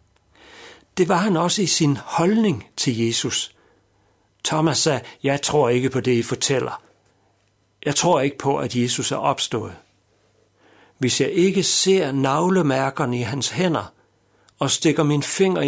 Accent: native